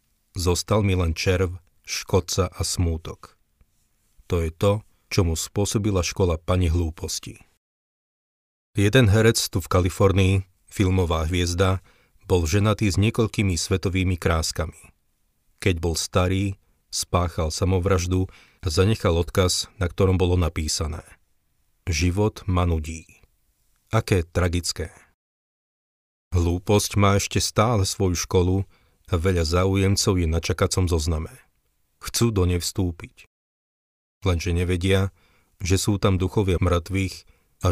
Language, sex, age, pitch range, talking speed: Slovak, male, 40-59, 85-100 Hz, 115 wpm